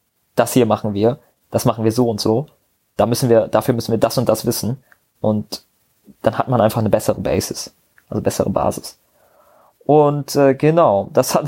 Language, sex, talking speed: German, male, 190 wpm